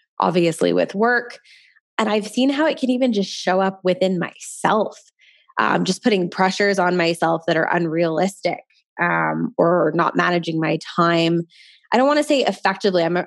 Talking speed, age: 165 wpm, 20-39